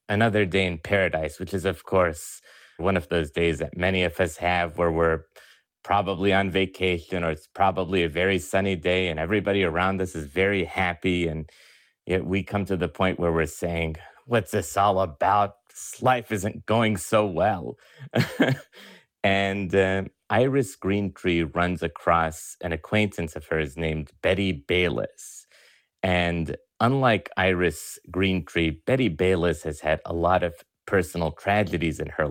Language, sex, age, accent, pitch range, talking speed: English, male, 30-49, American, 80-100 Hz, 155 wpm